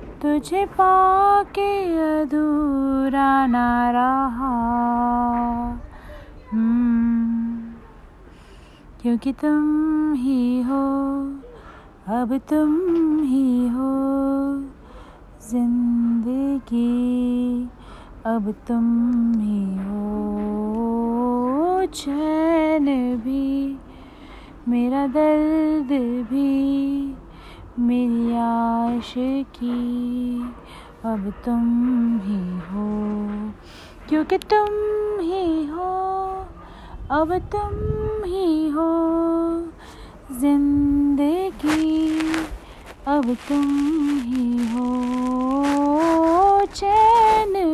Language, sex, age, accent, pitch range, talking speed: Hindi, female, 30-49, native, 240-315 Hz, 55 wpm